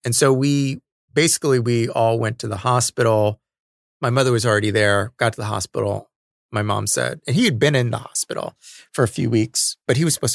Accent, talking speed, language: American, 215 wpm, English